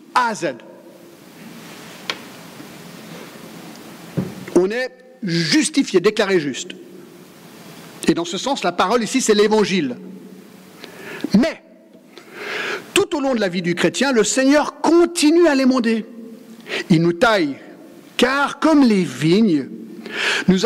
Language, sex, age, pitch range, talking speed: French, male, 50-69, 190-255 Hz, 110 wpm